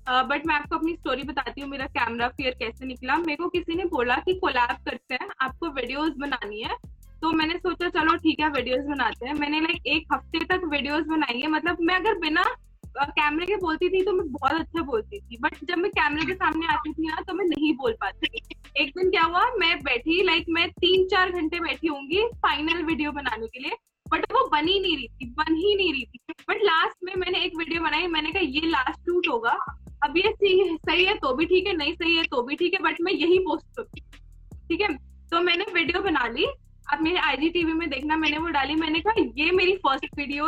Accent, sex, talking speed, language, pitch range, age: native, female, 180 wpm, Hindi, 290-365 Hz, 20-39